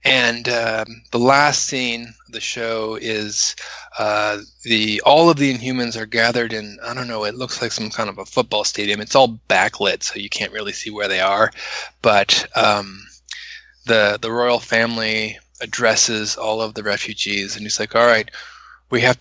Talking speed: 185 wpm